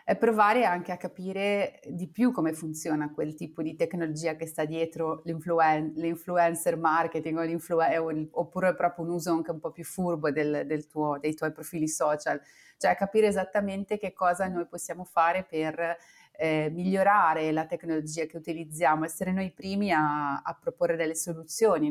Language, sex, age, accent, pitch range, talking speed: Italian, female, 30-49, native, 160-190 Hz, 170 wpm